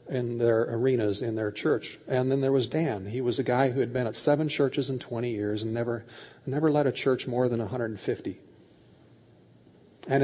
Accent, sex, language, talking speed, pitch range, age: American, male, English, 200 wpm, 130-180 Hz, 40-59